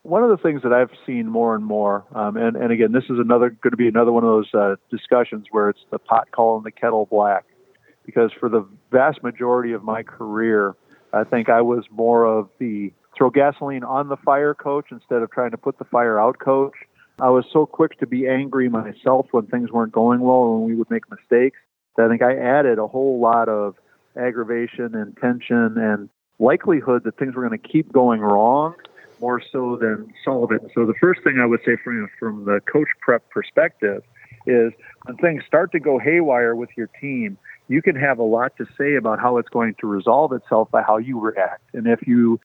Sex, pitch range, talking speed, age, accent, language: male, 115-130 Hz, 215 wpm, 40-59, American, English